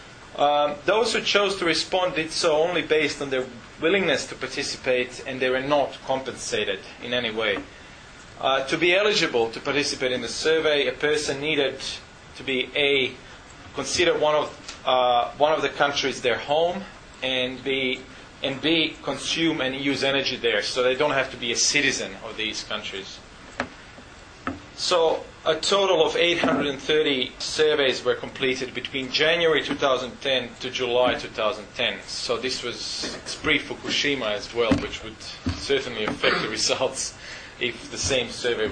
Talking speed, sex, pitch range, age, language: 155 wpm, male, 125-155 Hz, 30-49, English